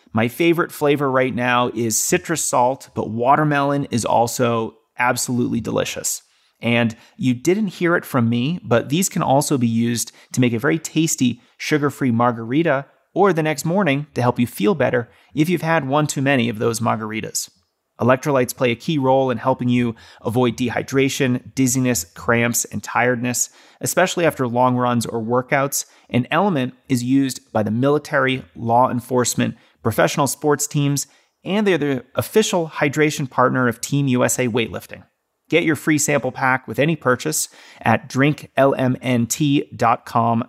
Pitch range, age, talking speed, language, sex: 120-145 Hz, 30-49, 155 wpm, English, male